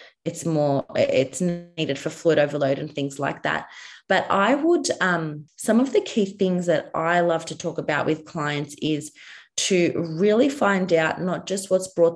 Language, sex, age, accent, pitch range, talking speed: English, female, 20-39, Australian, 160-180 Hz, 185 wpm